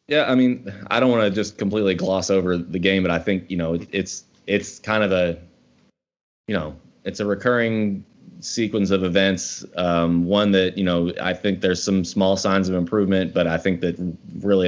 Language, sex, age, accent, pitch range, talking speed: English, male, 20-39, American, 90-100 Hz, 200 wpm